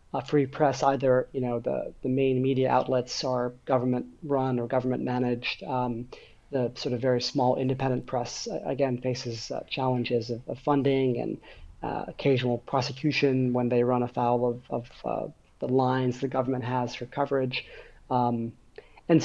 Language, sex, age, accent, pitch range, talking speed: English, male, 30-49, American, 125-145 Hz, 165 wpm